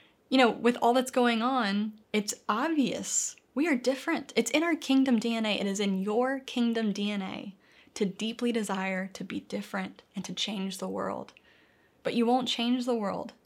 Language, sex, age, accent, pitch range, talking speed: English, female, 20-39, American, 200-250 Hz, 180 wpm